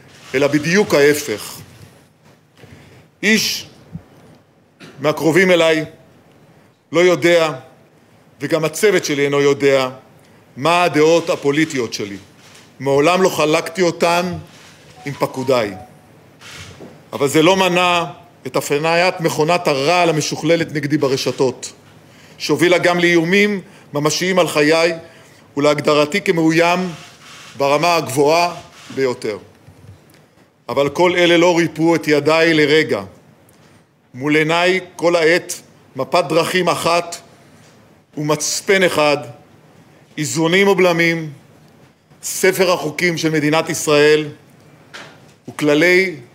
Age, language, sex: 50-69, Hebrew, male